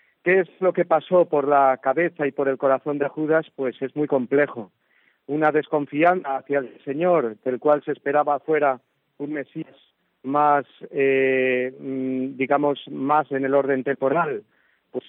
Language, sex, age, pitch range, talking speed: Spanish, male, 40-59, 135-155 Hz, 155 wpm